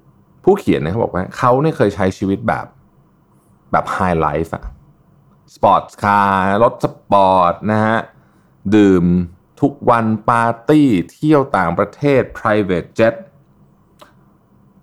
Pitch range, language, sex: 90-120 Hz, Thai, male